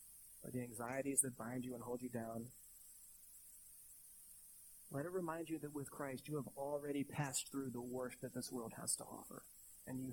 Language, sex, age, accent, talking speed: English, male, 30-49, American, 190 wpm